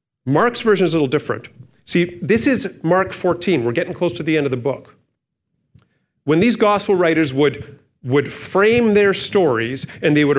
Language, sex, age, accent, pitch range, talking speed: English, male, 40-59, American, 130-185 Hz, 185 wpm